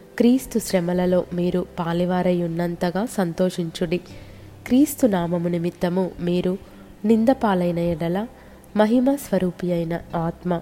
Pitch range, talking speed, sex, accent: 175-200 Hz, 80 wpm, female, native